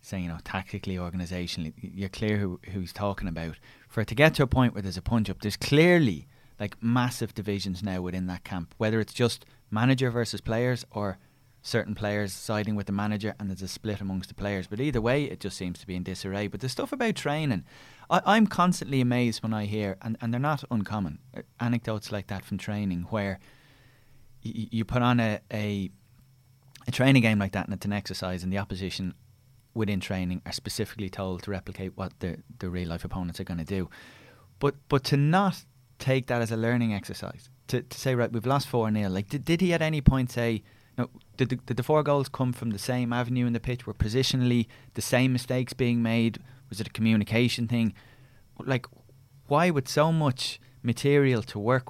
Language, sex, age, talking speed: English, male, 20-39, 205 wpm